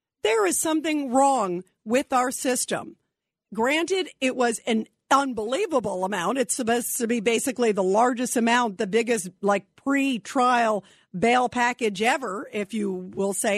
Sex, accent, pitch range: female, American, 235-315 Hz